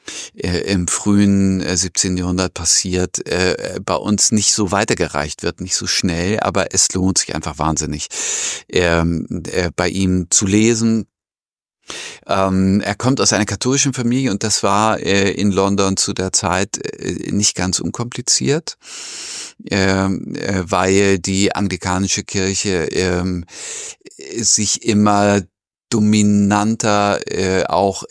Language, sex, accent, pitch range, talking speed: German, male, German, 90-100 Hz, 105 wpm